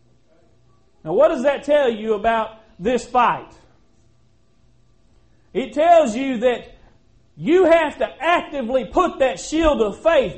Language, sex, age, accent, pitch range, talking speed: English, male, 40-59, American, 220-300 Hz, 125 wpm